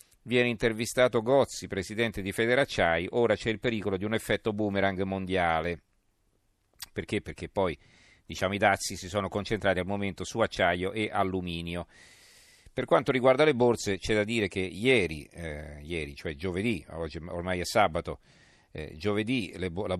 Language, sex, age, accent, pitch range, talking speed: Italian, male, 50-69, native, 85-105 Hz, 150 wpm